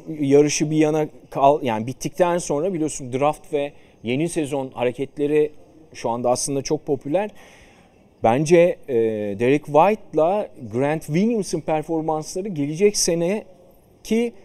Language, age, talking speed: Turkish, 40-59, 105 wpm